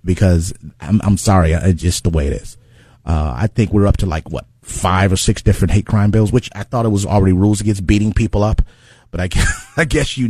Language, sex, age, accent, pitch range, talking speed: English, male, 30-49, American, 85-110 Hz, 240 wpm